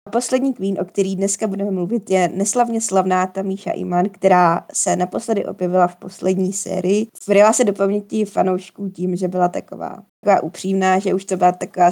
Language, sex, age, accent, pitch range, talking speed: Czech, female, 20-39, native, 175-195 Hz, 180 wpm